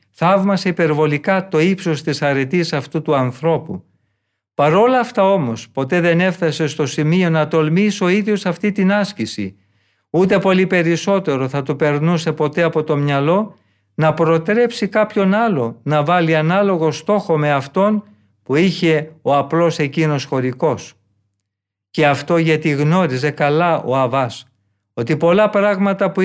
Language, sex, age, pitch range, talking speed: Greek, male, 50-69, 135-180 Hz, 140 wpm